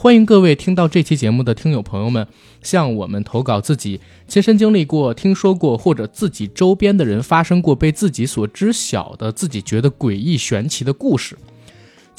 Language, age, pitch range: Chinese, 20-39, 115-175 Hz